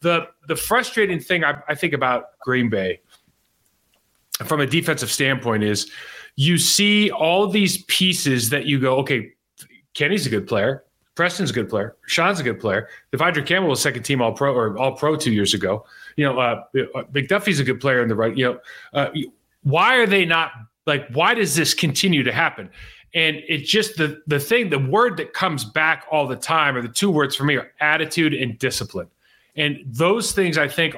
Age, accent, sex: 30-49, American, male